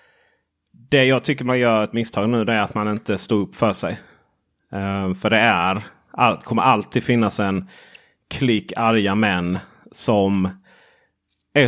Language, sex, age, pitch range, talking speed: Swedish, male, 30-49, 105-140 Hz, 145 wpm